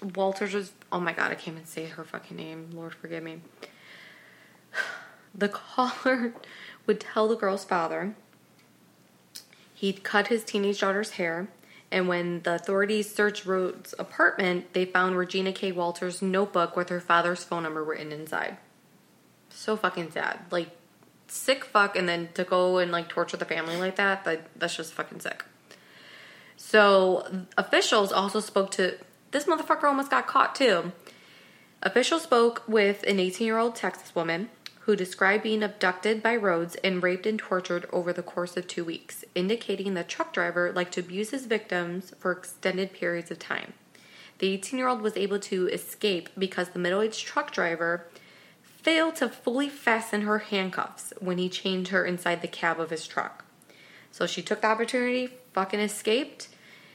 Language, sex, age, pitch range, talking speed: English, female, 20-39, 175-215 Hz, 160 wpm